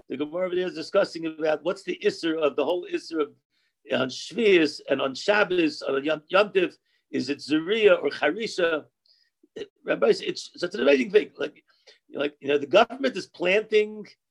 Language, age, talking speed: English, 50-69, 170 wpm